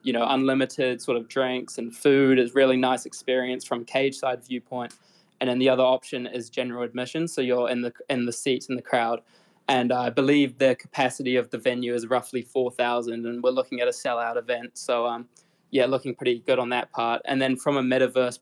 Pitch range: 125-135 Hz